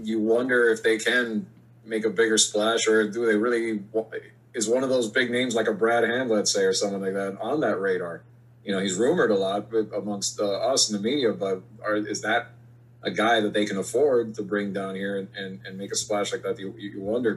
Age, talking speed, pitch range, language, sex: 30-49, 240 wpm, 105-120 Hz, English, male